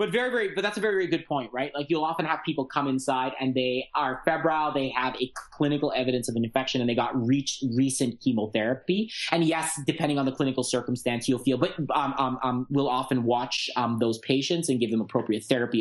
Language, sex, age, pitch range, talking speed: English, male, 30-49, 125-145 Hz, 230 wpm